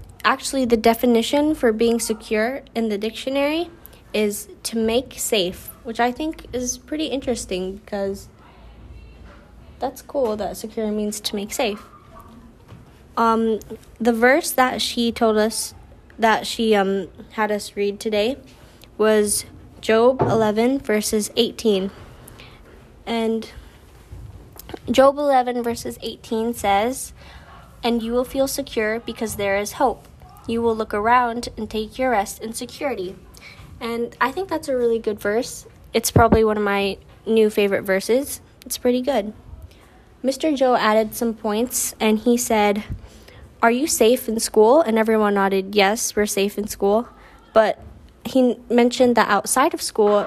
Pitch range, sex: 210-245 Hz, female